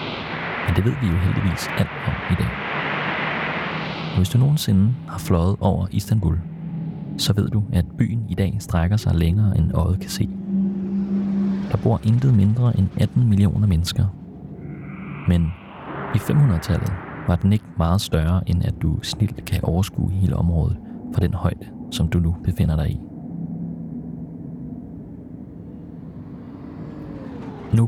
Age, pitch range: 30-49, 90-120 Hz